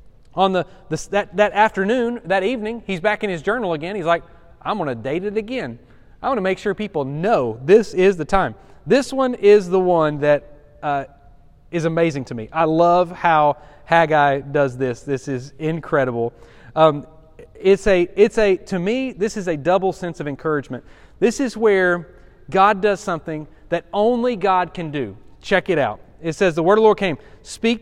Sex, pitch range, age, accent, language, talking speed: male, 155-205 Hz, 30-49, American, English, 195 wpm